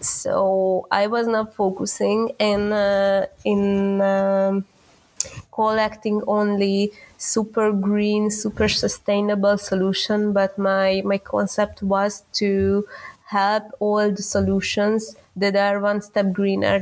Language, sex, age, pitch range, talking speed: Slovak, female, 20-39, 190-205 Hz, 110 wpm